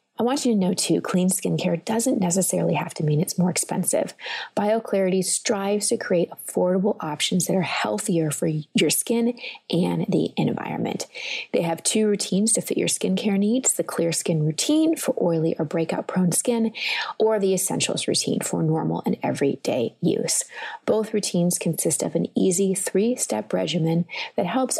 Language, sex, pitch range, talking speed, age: English, female, 170-225 Hz, 165 wpm, 30-49